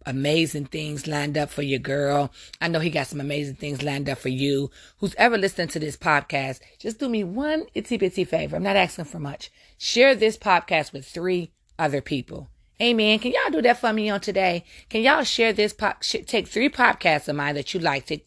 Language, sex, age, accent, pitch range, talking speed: English, female, 30-49, American, 145-190 Hz, 215 wpm